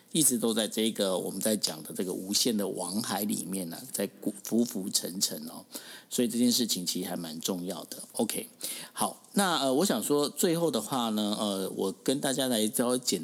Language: Chinese